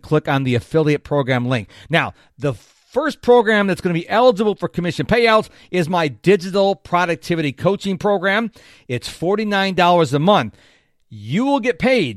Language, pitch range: English, 150-200 Hz